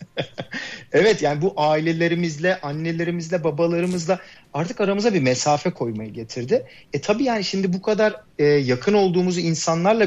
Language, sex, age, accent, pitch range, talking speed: Turkish, male, 40-59, native, 140-180 Hz, 130 wpm